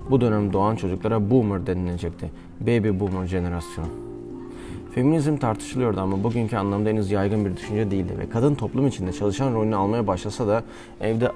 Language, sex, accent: Turkish, male, native